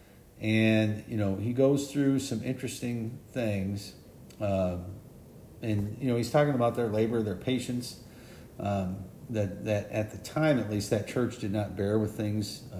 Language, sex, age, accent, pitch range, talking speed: English, male, 50-69, American, 95-120 Hz, 165 wpm